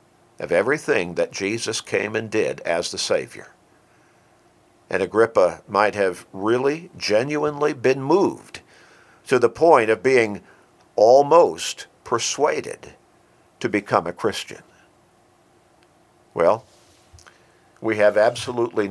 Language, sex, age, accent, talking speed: English, male, 50-69, American, 105 wpm